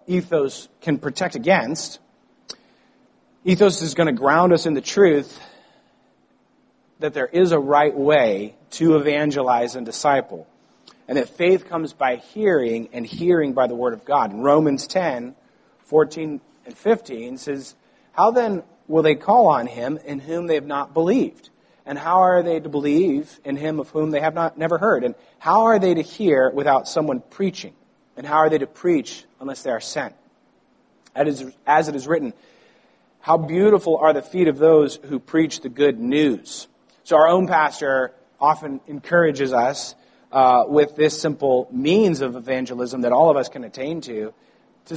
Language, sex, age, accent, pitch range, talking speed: English, male, 30-49, American, 140-180 Hz, 170 wpm